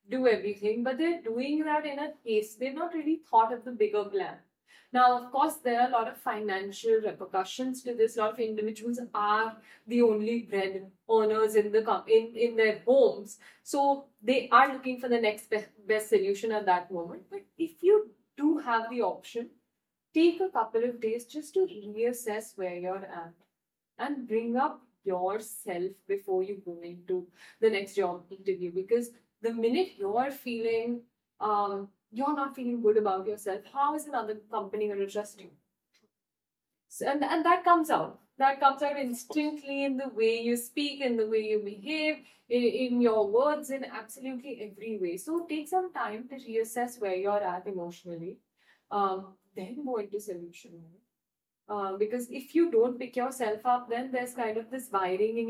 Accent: Indian